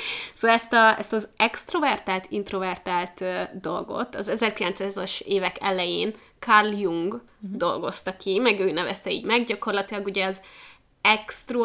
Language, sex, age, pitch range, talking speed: Hungarian, female, 20-39, 190-230 Hz, 130 wpm